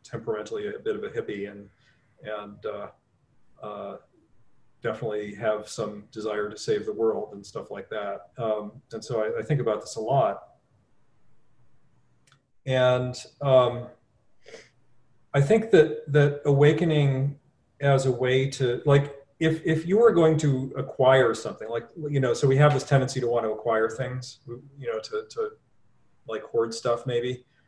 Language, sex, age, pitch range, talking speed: English, male, 40-59, 120-155 Hz, 160 wpm